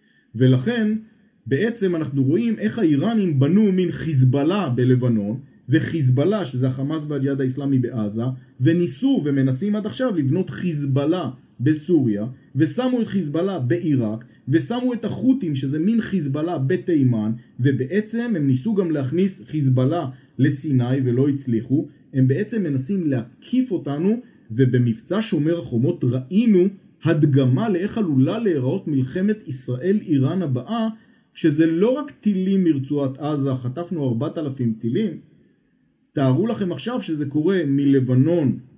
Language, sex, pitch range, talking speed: Hebrew, male, 130-195 Hz, 120 wpm